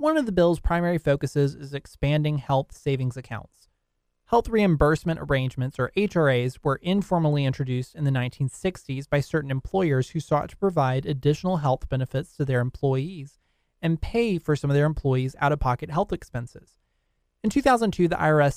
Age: 20-39